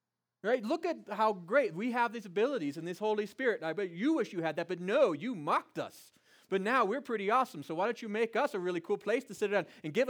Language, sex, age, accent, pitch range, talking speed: English, male, 30-49, American, 165-240 Hz, 265 wpm